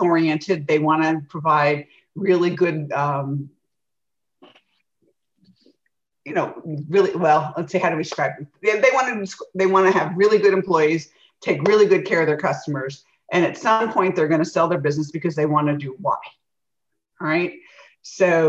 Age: 50-69